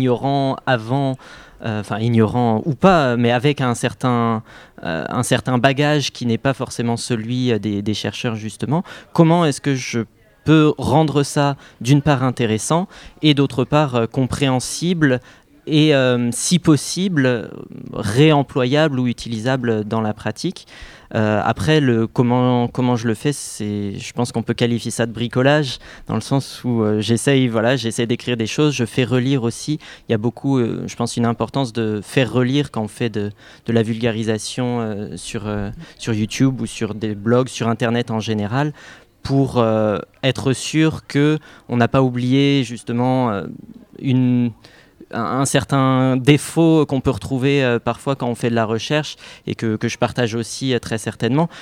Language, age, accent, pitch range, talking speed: French, 20-39, French, 115-140 Hz, 165 wpm